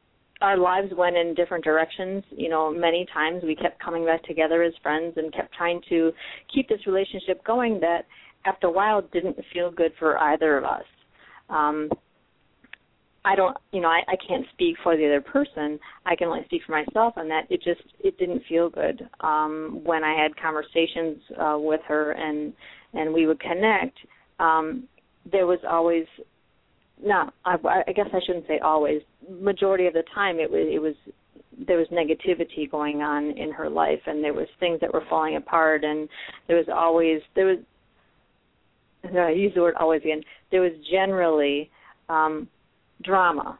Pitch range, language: 155-180 Hz, English